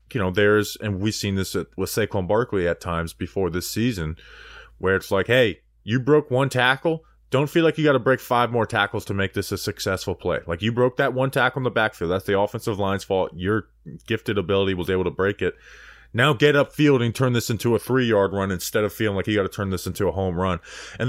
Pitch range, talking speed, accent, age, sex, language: 90-125 Hz, 250 wpm, American, 20-39, male, English